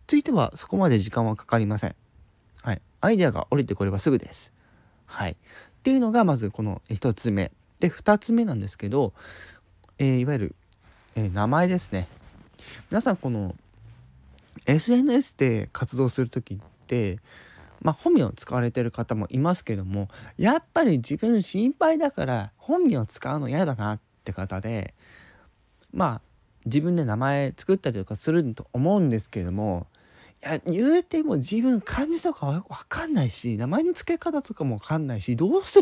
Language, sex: Japanese, male